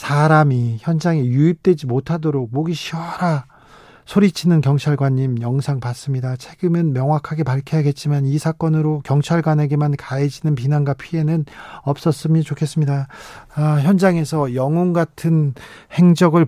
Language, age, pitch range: Korean, 40-59, 140-165 Hz